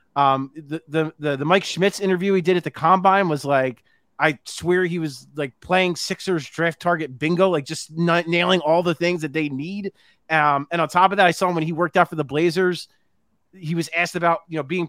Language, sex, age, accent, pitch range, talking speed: English, male, 30-49, American, 155-190 Hz, 230 wpm